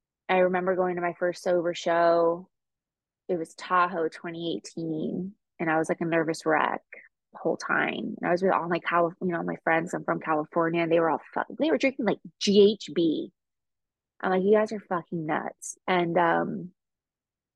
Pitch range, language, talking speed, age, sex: 165-185 Hz, English, 185 wpm, 20-39, female